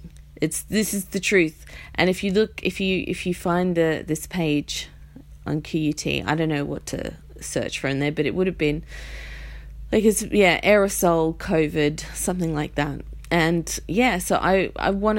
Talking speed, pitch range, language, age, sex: 185 wpm, 160-210 Hz, English, 30-49, female